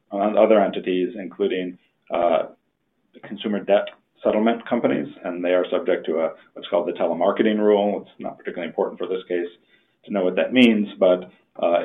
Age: 40-59